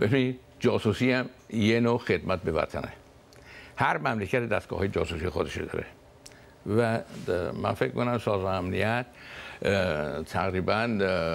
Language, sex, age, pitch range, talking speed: Persian, male, 60-79, 95-115 Hz, 120 wpm